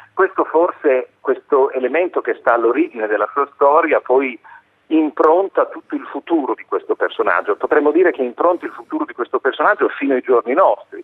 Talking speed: 170 wpm